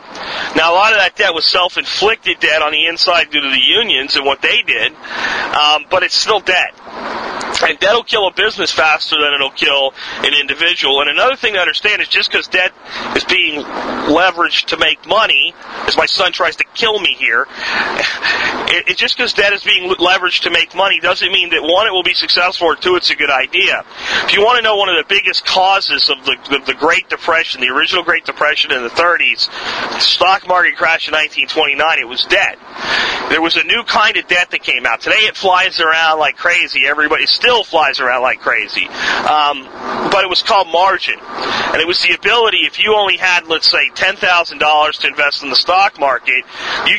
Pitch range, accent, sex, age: 150-190 Hz, American, male, 40-59